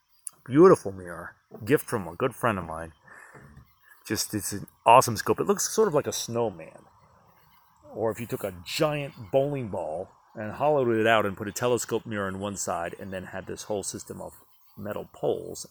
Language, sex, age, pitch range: English, male, 30-49, 105-155 Hz